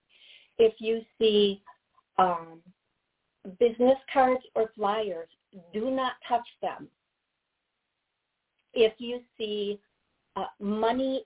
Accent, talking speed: American, 90 wpm